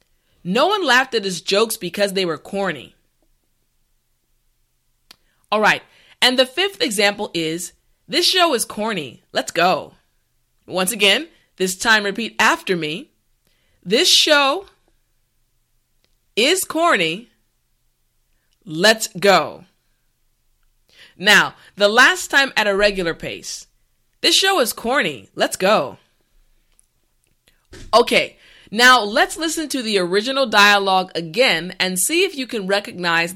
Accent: American